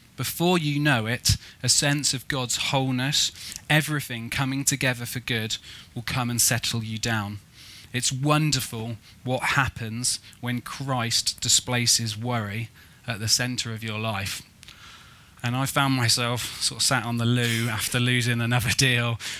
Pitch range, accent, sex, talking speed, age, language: 110-130 Hz, British, male, 150 wpm, 20-39, English